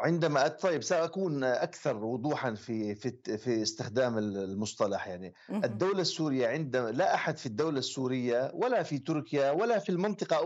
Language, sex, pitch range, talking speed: Arabic, male, 140-185 Hz, 145 wpm